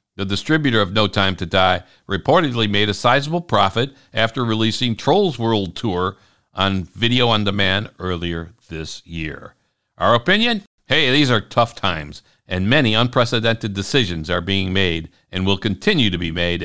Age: 60-79